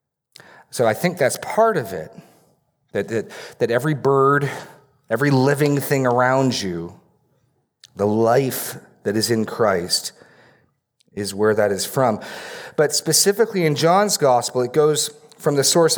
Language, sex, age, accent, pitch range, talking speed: English, male, 40-59, American, 105-135 Hz, 140 wpm